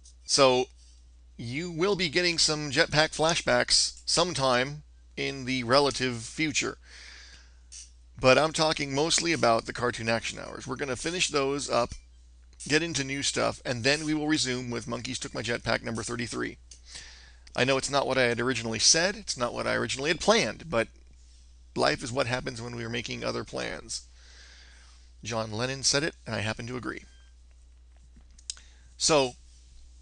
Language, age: English, 40-59